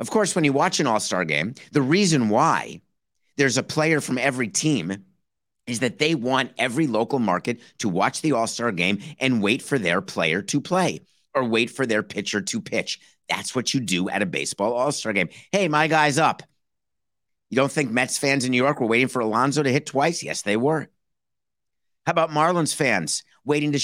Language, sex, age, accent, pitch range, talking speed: English, male, 50-69, American, 120-170 Hz, 200 wpm